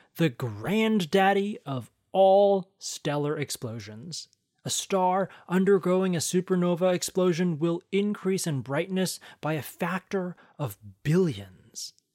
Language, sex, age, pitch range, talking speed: English, male, 30-49, 145-205 Hz, 105 wpm